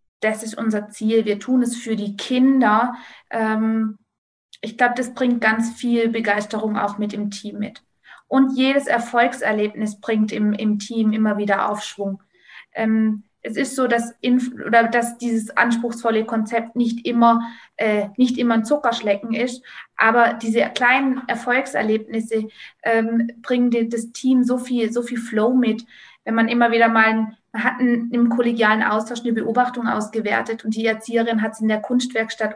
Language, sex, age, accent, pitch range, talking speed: German, female, 20-39, German, 215-235 Hz, 160 wpm